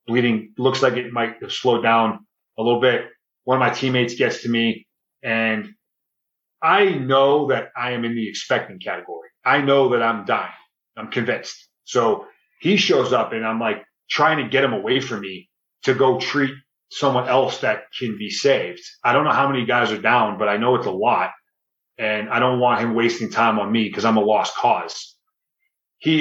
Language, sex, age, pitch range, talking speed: English, male, 30-49, 110-135 Hz, 200 wpm